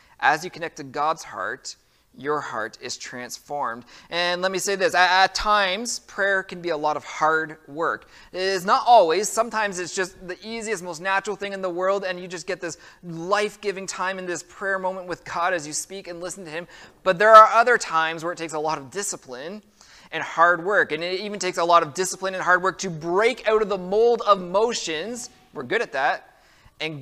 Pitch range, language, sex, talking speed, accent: 155-190 Hz, English, male, 220 wpm, American